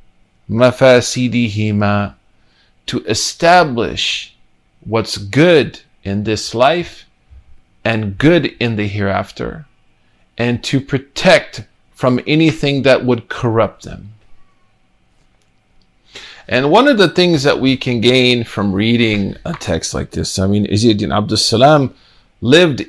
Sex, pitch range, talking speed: male, 110-140 Hz, 110 wpm